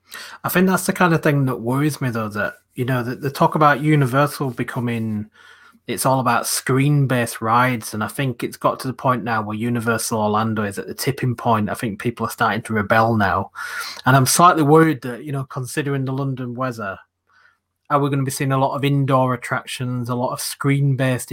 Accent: British